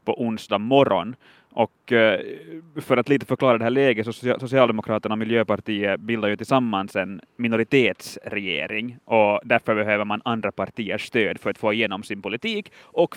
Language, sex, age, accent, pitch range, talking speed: Swedish, male, 20-39, Finnish, 110-140 Hz, 155 wpm